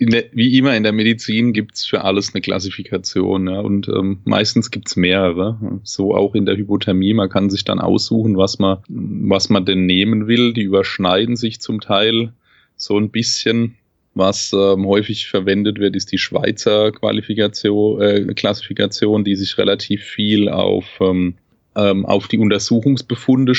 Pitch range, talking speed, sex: 95-110 Hz, 160 wpm, male